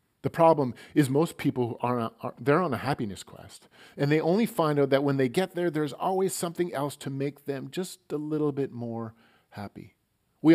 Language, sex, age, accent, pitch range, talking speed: English, male, 40-59, American, 115-155 Hz, 205 wpm